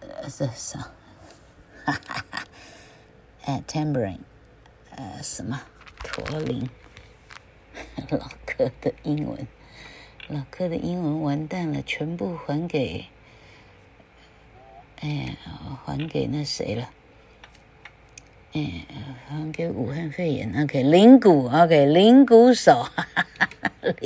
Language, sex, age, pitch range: Chinese, female, 50-69, 140-190 Hz